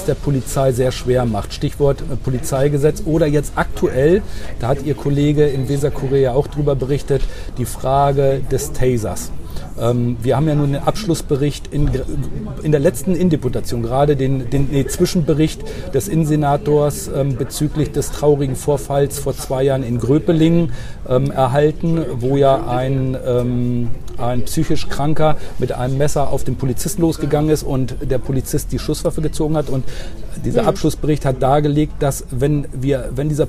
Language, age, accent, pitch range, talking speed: German, 40-59, German, 125-150 Hz, 150 wpm